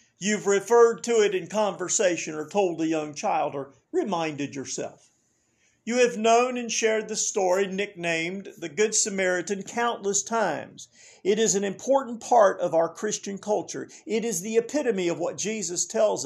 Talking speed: 160 wpm